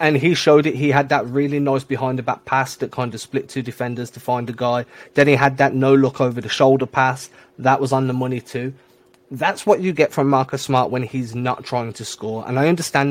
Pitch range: 120-140 Hz